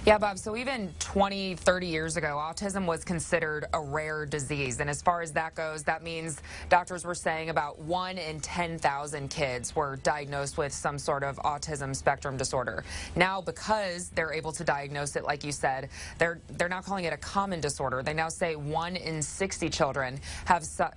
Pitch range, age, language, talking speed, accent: 145-175 Hz, 20-39, English, 190 wpm, American